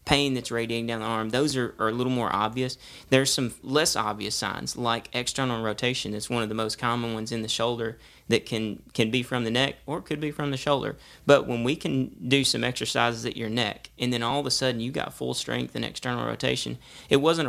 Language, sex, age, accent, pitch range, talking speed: English, male, 30-49, American, 115-130 Hz, 240 wpm